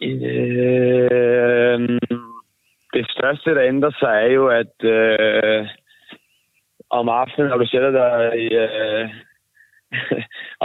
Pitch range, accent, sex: 115-130 Hz, native, male